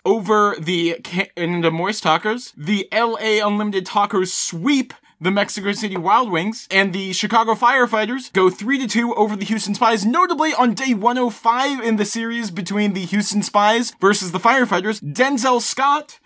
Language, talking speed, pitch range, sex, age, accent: English, 160 wpm, 180-235 Hz, male, 30-49, American